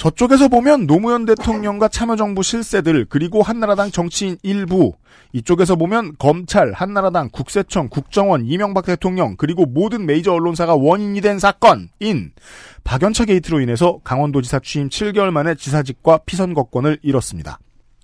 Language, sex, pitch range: Korean, male, 145-200 Hz